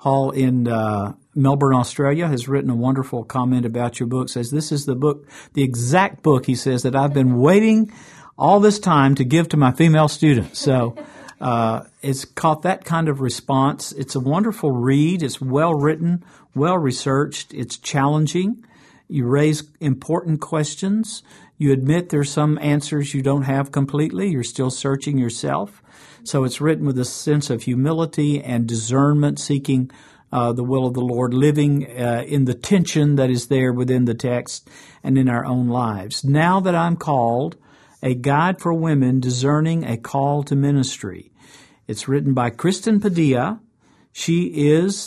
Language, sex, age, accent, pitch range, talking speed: English, male, 50-69, American, 130-155 Hz, 165 wpm